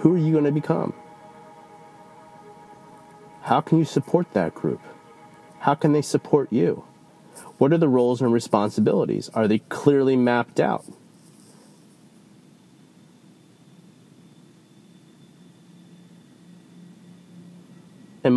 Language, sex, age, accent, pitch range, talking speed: English, male, 30-49, American, 115-175 Hz, 95 wpm